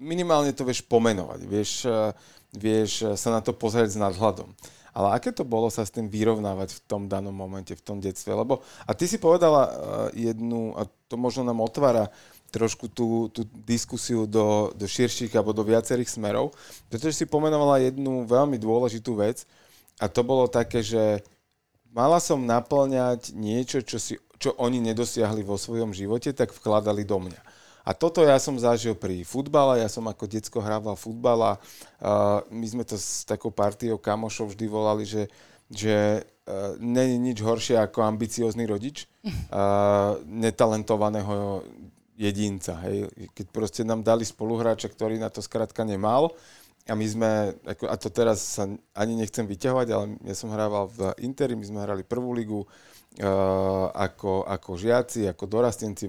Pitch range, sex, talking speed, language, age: 105-120 Hz, male, 165 wpm, Slovak, 30-49